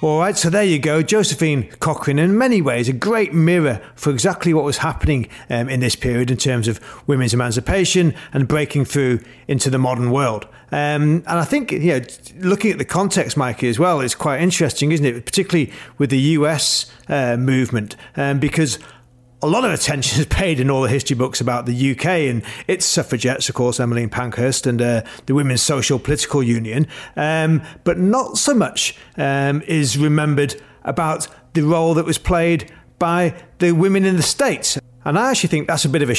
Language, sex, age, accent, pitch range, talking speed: English, male, 40-59, British, 125-165 Hz, 190 wpm